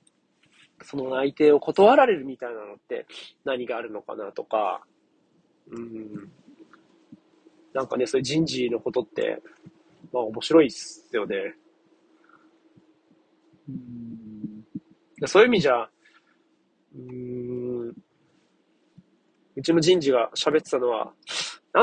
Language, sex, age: Japanese, male, 40-59